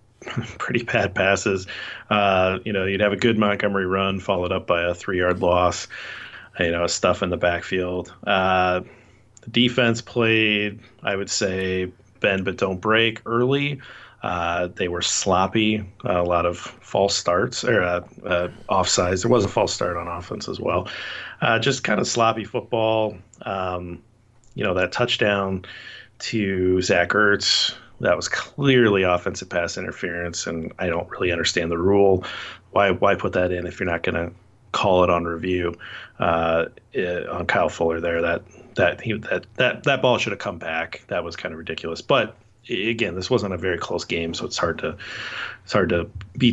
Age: 40-59